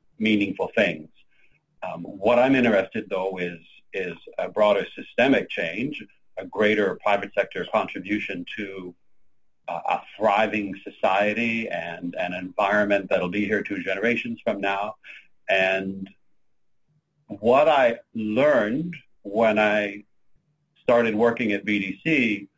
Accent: American